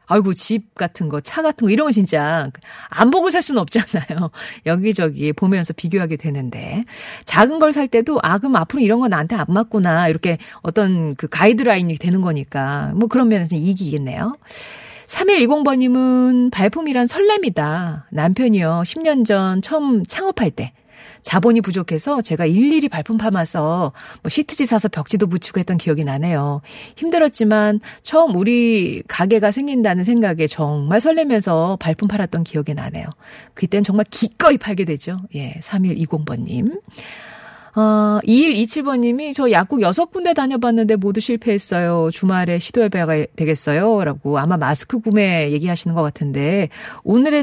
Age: 40-59